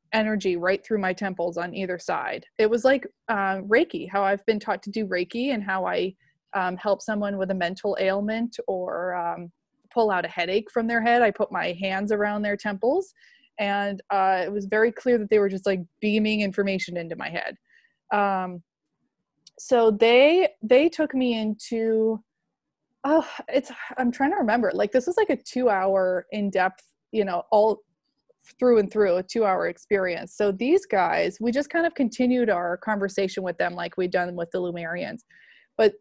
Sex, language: female, English